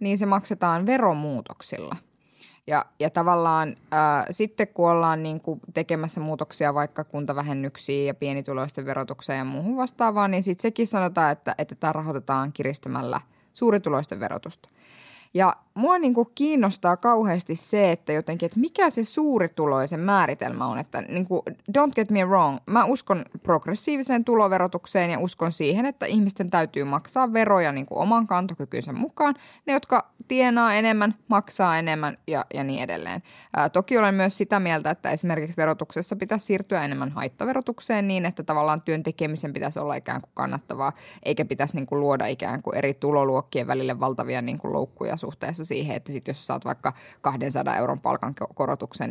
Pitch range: 150-215 Hz